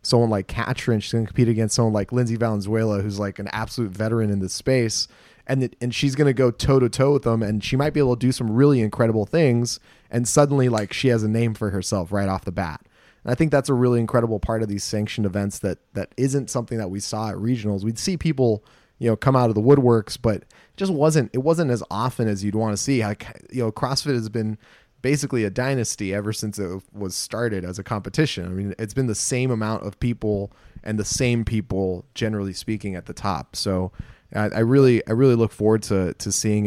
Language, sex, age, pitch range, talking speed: English, male, 20-39, 100-125 Hz, 230 wpm